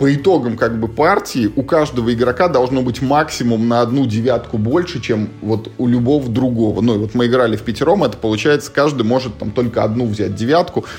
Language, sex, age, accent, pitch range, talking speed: Russian, male, 20-39, native, 110-135 Hz, 195 wpm